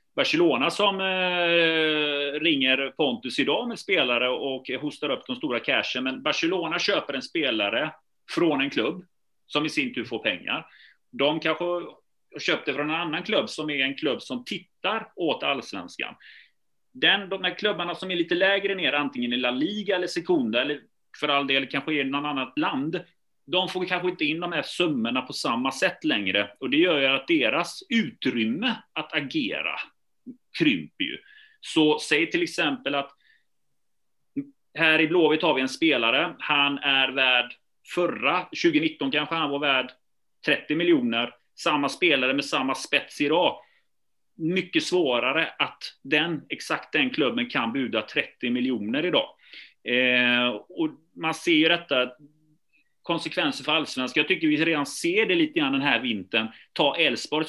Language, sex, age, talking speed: Swedish, male, 30-49, 160 wpm